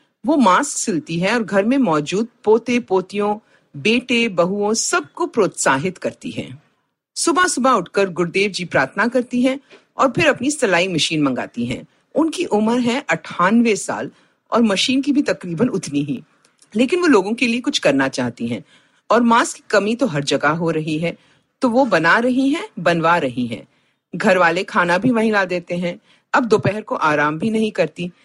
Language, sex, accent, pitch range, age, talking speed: Hindi, female, native, 170-255 Hz, 50-69, 180 wpm